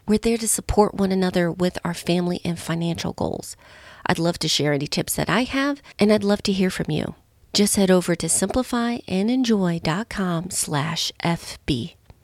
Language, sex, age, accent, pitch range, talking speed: English, female, 40-59, American, 165-210 Hz, 170 wpm